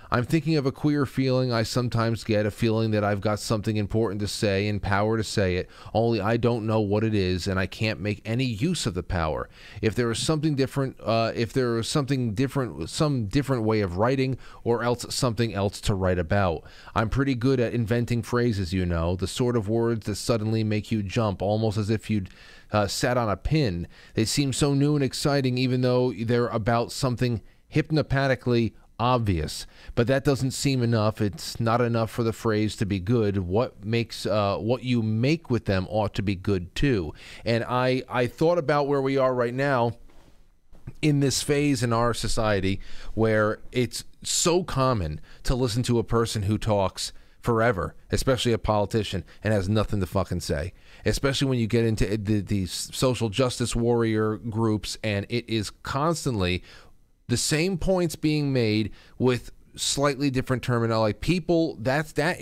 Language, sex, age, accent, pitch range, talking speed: English, male, 30-49, American, 105-130 Hz, 185 wpm